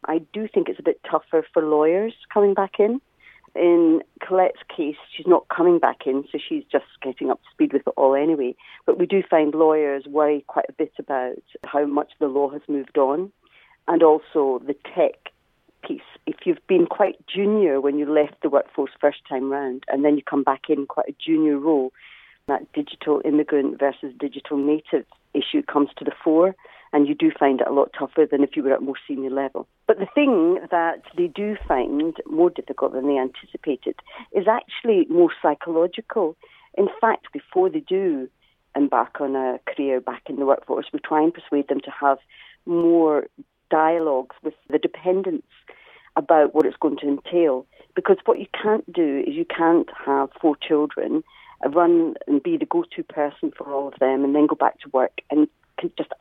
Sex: female